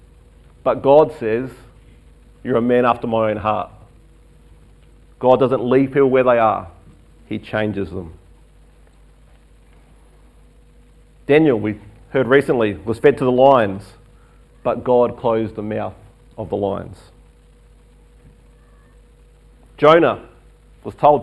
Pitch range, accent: 105-135 Hz, Australian